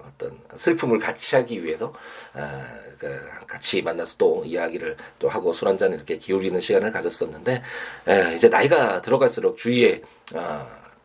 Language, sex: Korean, male